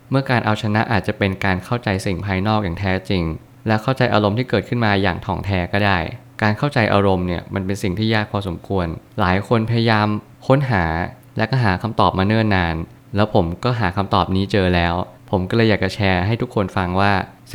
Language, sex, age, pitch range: Thai, male, 20-39, 95-115 Hz